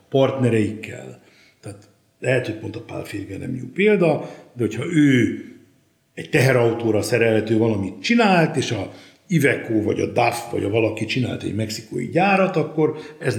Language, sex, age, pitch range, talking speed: Hungarian, male, 60-79, 115-150 Hz, 150 wpm